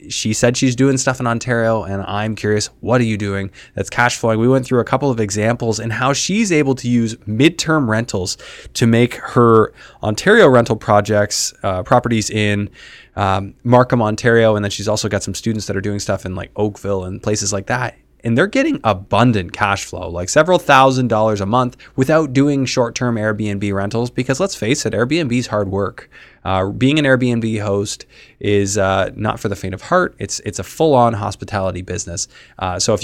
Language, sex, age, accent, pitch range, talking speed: English, male, 20-39, American, 100-125 Hz, 195 wpm